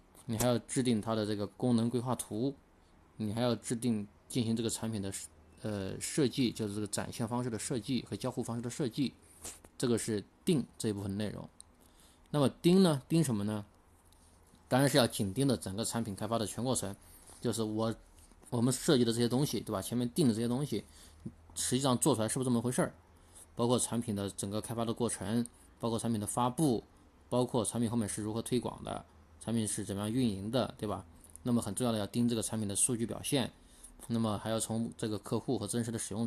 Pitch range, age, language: 95-120 Hz, 20-39, Chinese